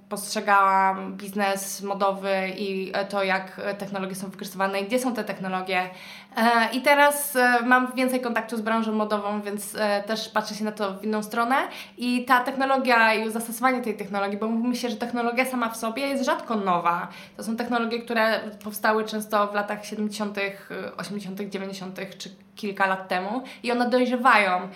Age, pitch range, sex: 20-39, 200-230 Hz, female